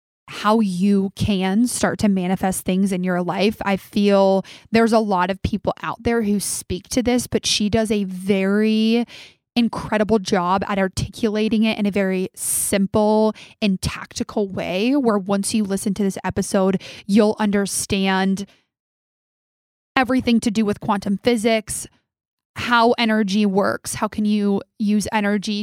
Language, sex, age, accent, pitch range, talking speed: English, female, 20-39, American, 195-215 Hz, 145 wpm